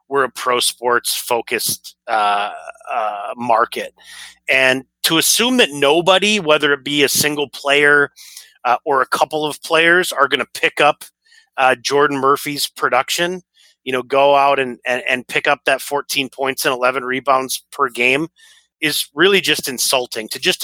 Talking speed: 165 wpm